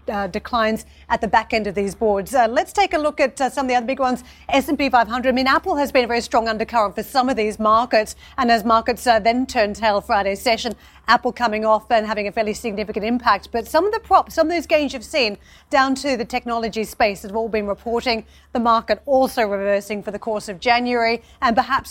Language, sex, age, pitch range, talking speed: English, female, 40-59, 215-260 Hz, 240 wpm